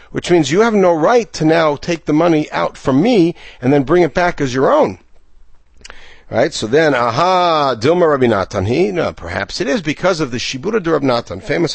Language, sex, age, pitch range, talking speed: English, male, 60-79, 115-165 Hz, 215 wpm